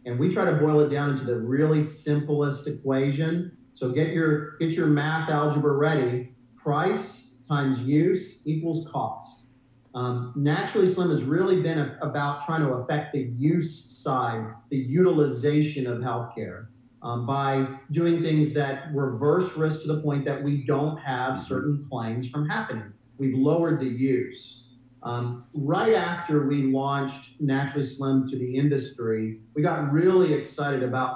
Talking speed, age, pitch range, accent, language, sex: 150 wpm, 40-59, 130-155 Hz, American, English, male